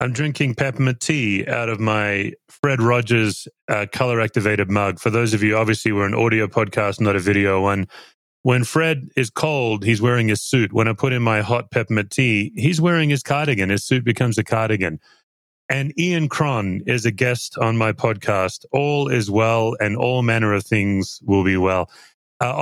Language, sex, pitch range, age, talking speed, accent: English, male, 100-125 Hz, 30-49, 190 wpm, American